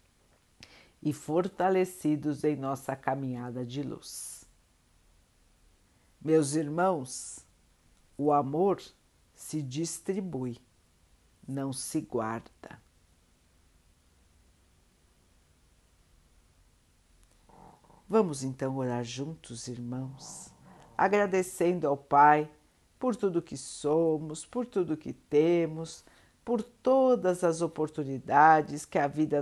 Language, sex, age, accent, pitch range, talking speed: Portuguese, female, 60-79, Brazilian, 130-165 Hz, 80 wpm